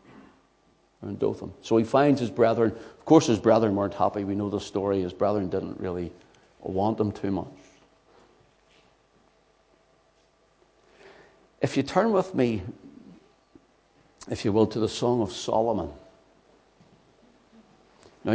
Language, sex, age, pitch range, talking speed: English, male, 60-79, 100-120 Hz, 130 wpm